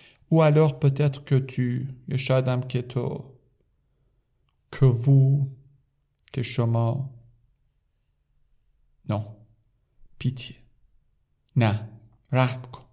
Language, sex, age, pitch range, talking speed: Persian, male, 50-69, 115-135 Hz, 50 wpm